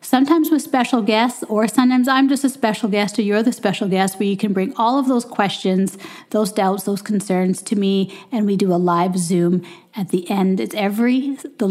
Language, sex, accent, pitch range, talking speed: English, female, American, 185-230 Hz, 215 wpm